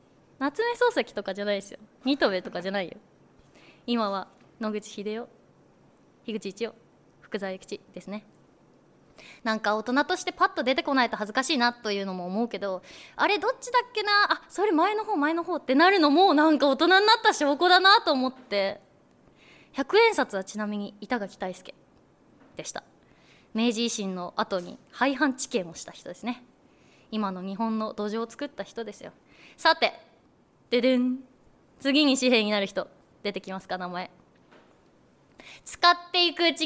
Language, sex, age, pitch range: Japanese, female, 20-39, 210-305 Hz